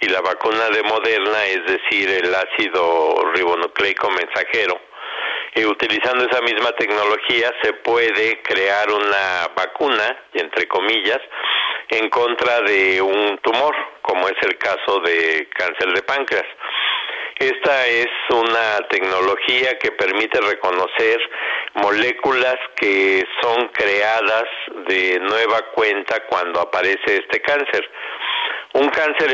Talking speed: 115 wpm